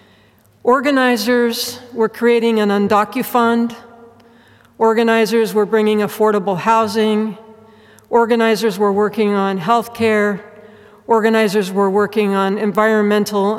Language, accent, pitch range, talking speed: English, American, 205-235 Hz, 95 wpm